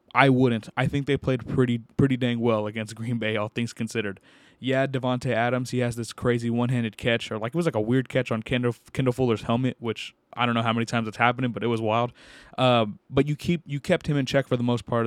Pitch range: 120-140 Hz